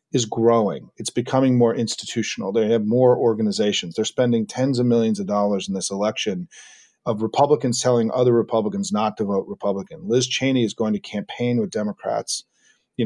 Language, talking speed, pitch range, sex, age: English, 175 wpm, 105-135 Hz, male, 40-59